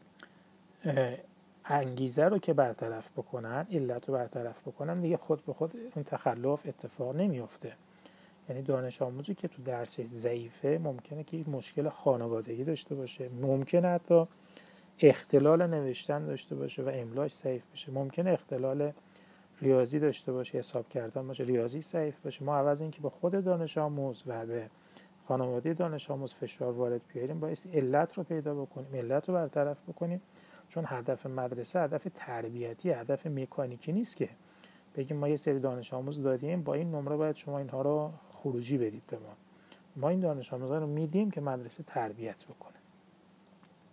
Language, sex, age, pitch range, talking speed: Persian, male, 30-49, 130-170 Hz, 155 wpm